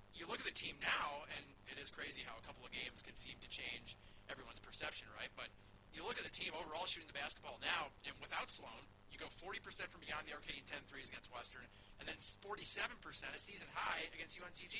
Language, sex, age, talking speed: English, male, 30-49, 225 wpm